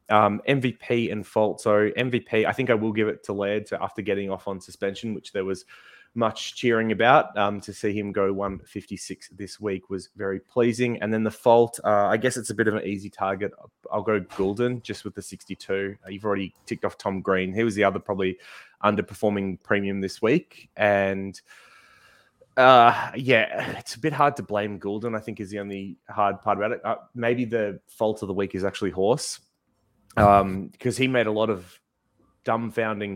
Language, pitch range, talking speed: English, 95-110 Hz, 200 wpm